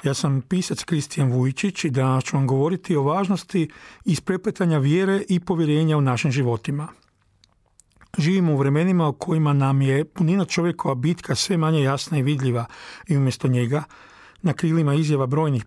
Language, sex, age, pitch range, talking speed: Croatian, male, 40-59, 140-175 Hz, 160 wpm